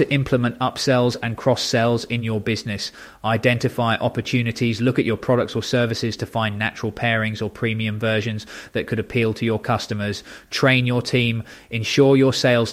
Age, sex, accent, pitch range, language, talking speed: 20-39, male, British, 110-125 Hz, English, 160 wpm